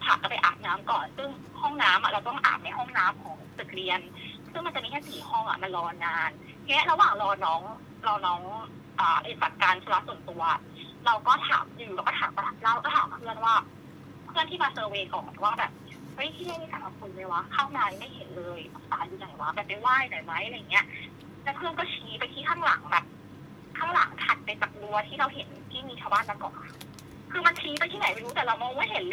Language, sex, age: English, female, 20-39